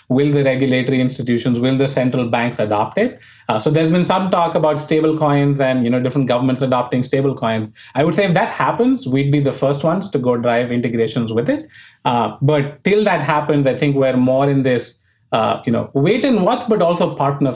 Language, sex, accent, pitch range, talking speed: English, male, Indian, 120-150 Hz, 220 wpm